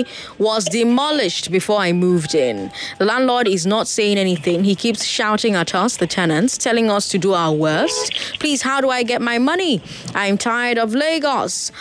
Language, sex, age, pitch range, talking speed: English, female, 20-39, 175-245 Hz, 185 wpm